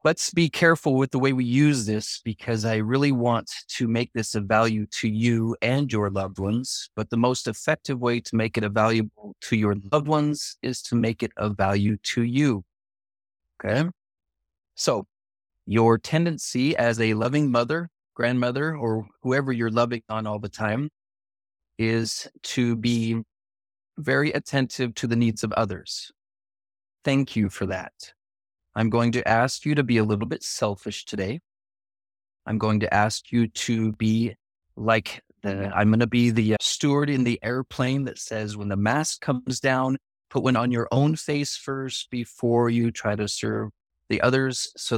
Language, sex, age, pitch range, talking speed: English, male, 30-49, 105-125 Hz, 170 wpm